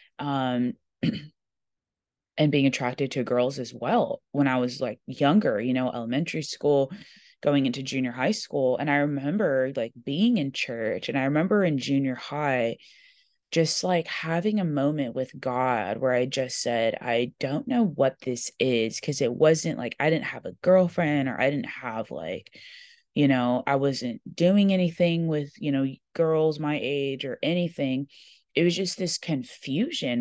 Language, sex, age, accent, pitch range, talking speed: English, female, 20-39, American, 130-160 Hz, 170 wpm